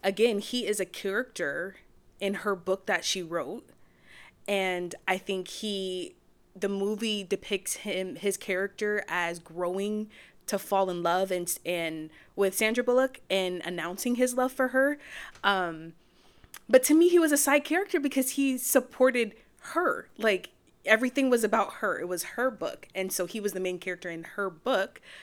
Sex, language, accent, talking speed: female, English, American, 165 wpm